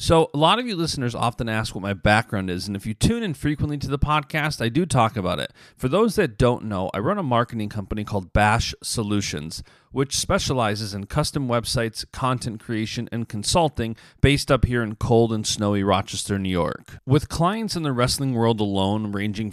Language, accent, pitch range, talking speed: English, American, 105-135 Hz, 205 wpm